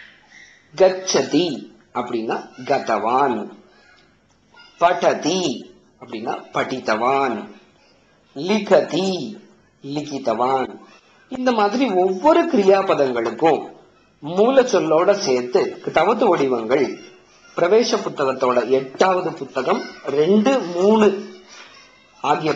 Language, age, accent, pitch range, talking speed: Tamil, 50-69, native, 155-235 Hz, 55 wpm